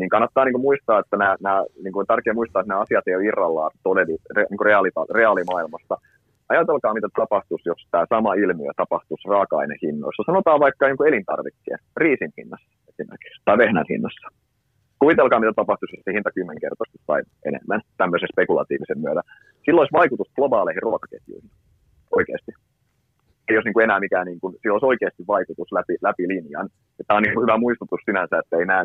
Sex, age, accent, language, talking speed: male, 30-49, native, Finnish, 140 wpm